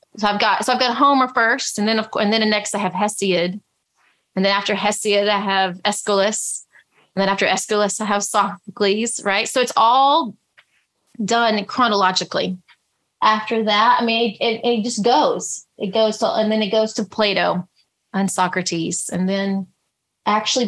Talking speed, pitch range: 175 wpm, 200-240 Hz